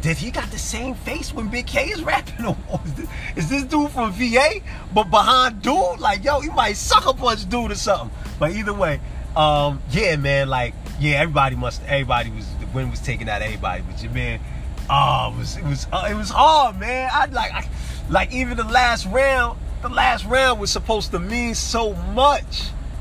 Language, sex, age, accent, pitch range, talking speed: English, male, 30-49, American, 110-175 Hz, 210 wpm